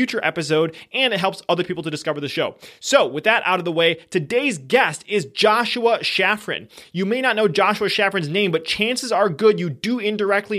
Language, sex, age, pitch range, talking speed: English, male, 20-39, 170-210 Hz, 210 wpm